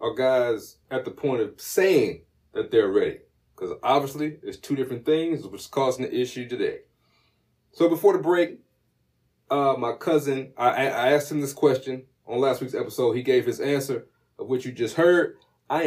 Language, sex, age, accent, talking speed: English, male, 30-49, American, 185 wpm